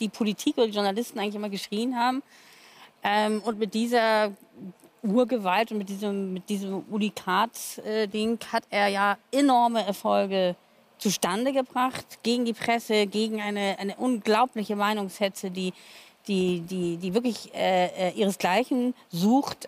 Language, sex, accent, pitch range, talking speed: German, female, German, 200-235 Hz, 135 wpm